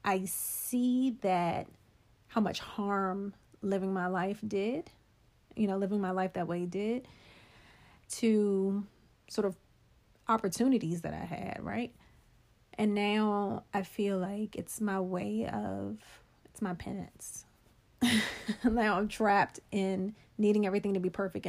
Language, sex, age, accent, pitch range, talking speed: English, female, 30-49, American, 180-210 Hz, 130 wpm